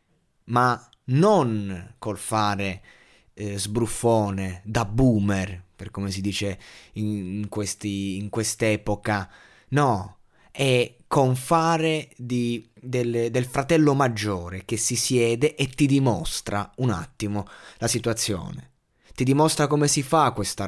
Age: 20-39